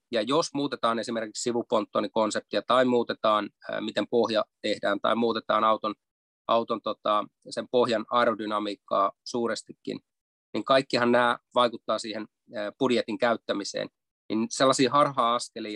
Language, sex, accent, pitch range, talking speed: Finnish, male, native, 105-120 Hz, 120 wpm